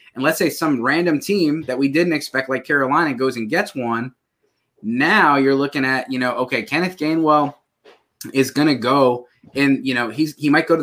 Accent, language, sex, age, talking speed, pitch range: American, English, male, 20-39, 205 wpm, 130-160 Hz